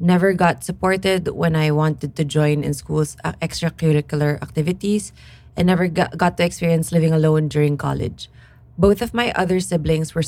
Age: 20-39